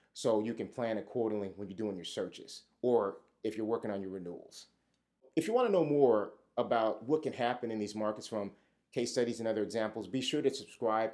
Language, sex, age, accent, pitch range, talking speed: English, male, 30-49, American, 105-130 Hz, 210 wpm